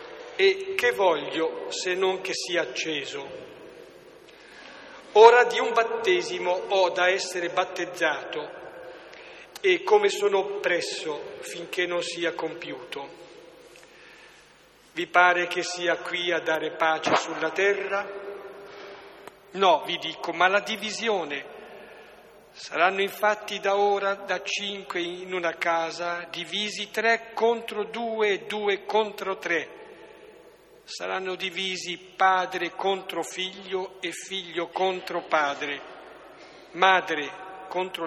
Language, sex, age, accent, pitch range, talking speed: Italian, male, 50-69, native, 170-230 Hz, 105 wpm